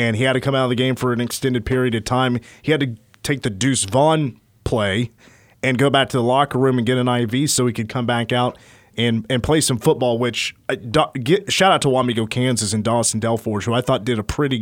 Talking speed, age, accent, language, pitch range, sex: 245 wpm, 30-49, American, English, 110-135 Hz, male